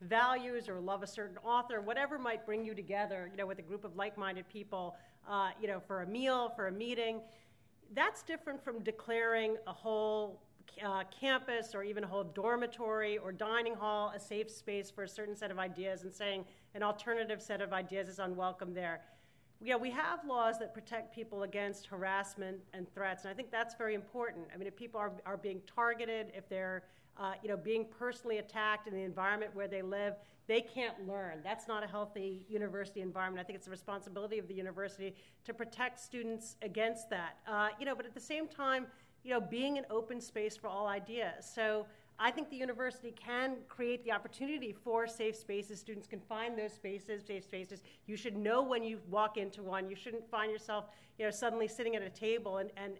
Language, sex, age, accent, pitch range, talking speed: English, female, 40-59, American, 195-230 Hz, 205 wpm